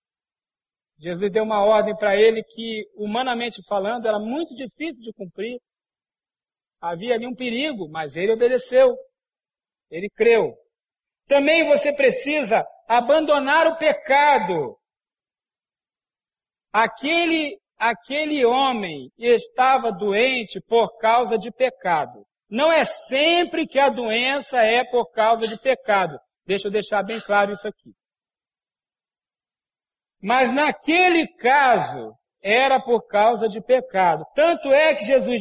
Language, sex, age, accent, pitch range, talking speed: Portuguese, male, 60-79, Brazilian, 220-295 Hz, 115 wpm